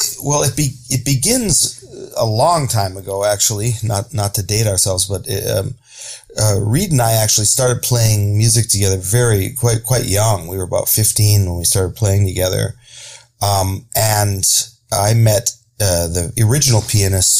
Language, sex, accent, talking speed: English, male, American, 165 wpm